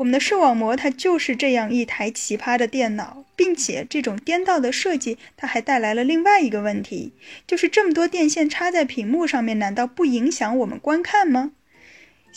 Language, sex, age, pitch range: Chinese, female, 10-29, 230-330 Hz